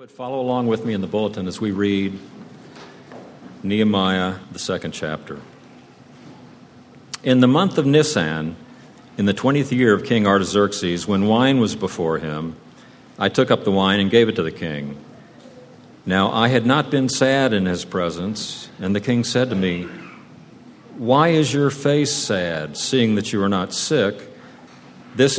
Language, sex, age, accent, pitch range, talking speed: English, male, 50-69, American, 90-125 Hz, 165 wpm